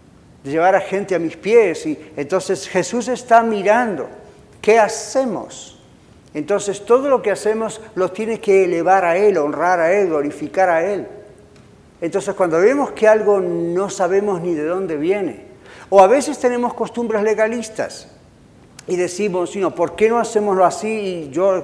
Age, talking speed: 50-69, 160 wpm